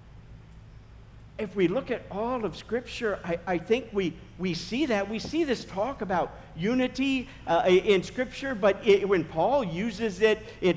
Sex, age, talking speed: male, 50-69, 160 wpm